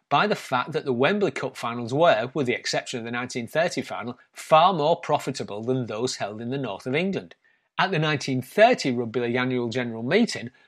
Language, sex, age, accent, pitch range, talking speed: English, male, 30-49, British, 125-170 Hz, 190 wpm